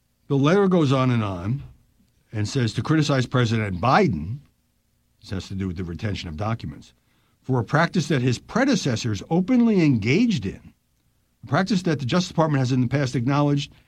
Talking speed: 175 wpm